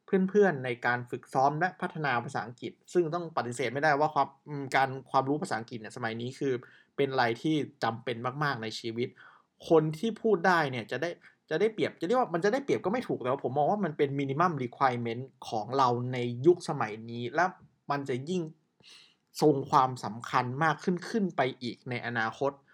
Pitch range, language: 125-165 Hz, Thai